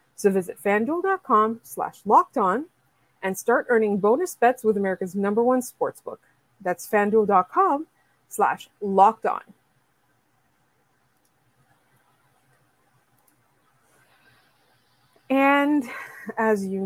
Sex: female